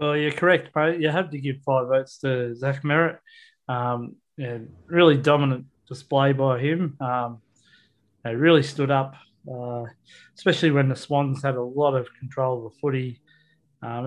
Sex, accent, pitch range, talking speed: male, Australian, 125-150 Hz, 170 wpm